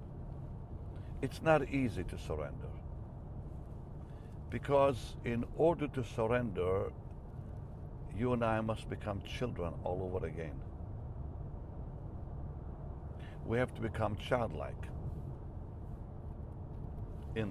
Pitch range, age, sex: 85-125 Hz, 60-79, male